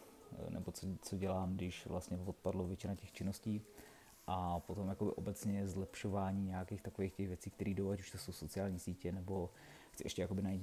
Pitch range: 95-105 Hz